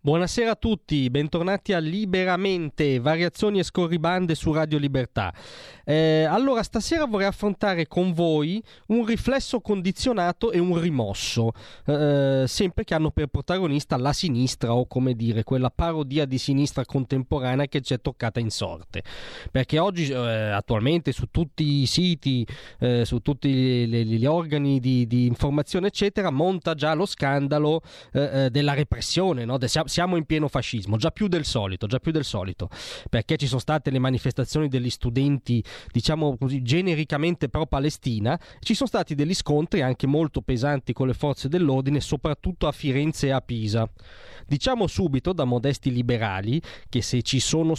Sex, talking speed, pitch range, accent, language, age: male, 160 wpm, 125-170 Hz, native, Italian, 20-39